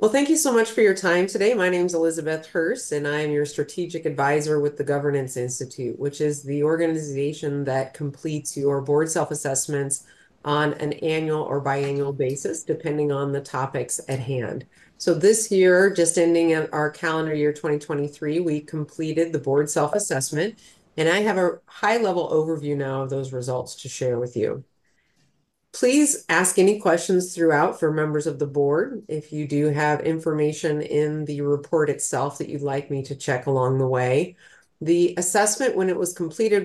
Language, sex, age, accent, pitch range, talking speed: English, female, 30-49, American, 140-165 Hz, 175 wpm